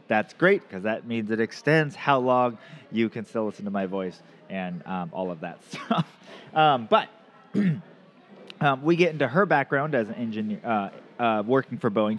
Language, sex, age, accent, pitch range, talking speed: English, male, 30-49, American, 110-155 Hz, 185 wpm